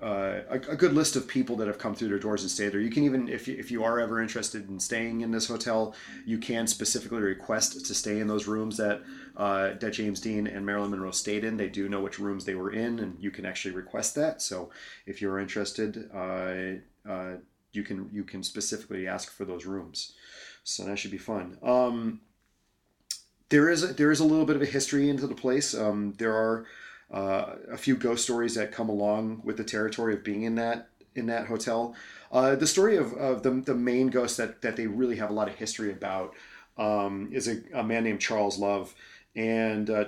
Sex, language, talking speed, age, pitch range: male, English, 220 wpm, 30-49, 105-125 Hz